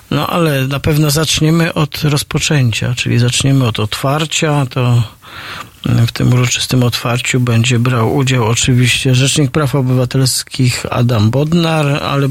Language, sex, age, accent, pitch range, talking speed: Polish, male, 40-59, native, 120-145 Hz, 125 wpm